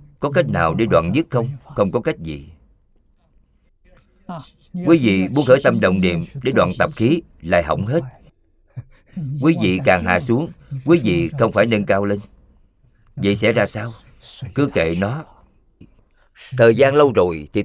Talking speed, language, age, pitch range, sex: 165 wpm, Vietnamese, 50-69, 90-130 Hz, male